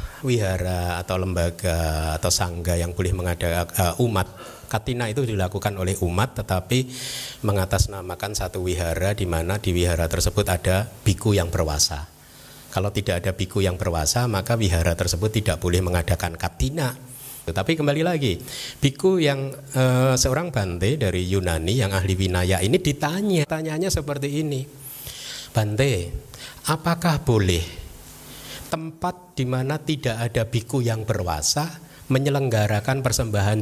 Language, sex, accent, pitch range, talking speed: Indonesian, male, native, 95-135 Hz, 125 wpm